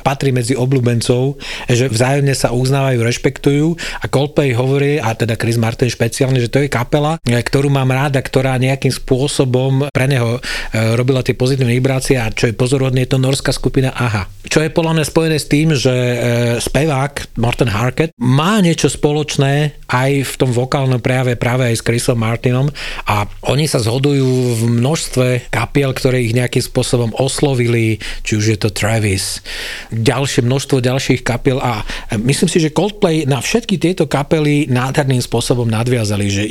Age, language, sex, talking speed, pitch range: 40-59, Slovak, male, 165 wpm, 120-140 Hz